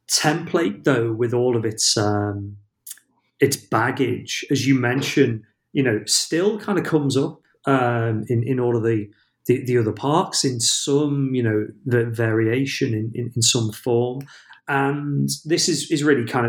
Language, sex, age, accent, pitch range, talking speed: English, male, 30-49, British, 110-135 Hz, 165 wpm